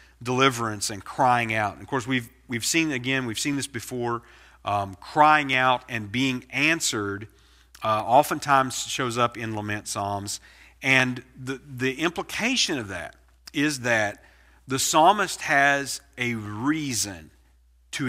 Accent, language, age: American, English, 40-59